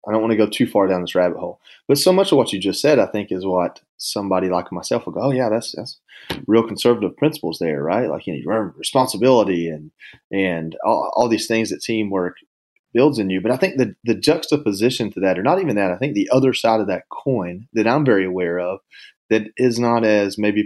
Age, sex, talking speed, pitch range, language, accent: 30-49, male, 245 wpm, 95-120 Hz, English, American